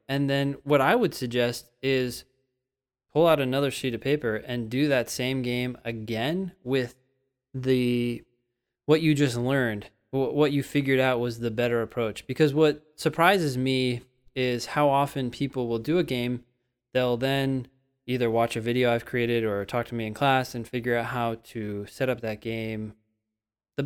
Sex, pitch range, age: male, 120-140 Hz, 20-39